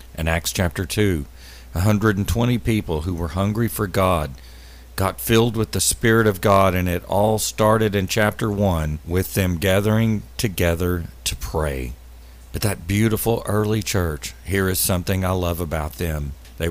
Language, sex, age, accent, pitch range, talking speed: English, male, 50-69, American, 80-95 Hz, 160 wpm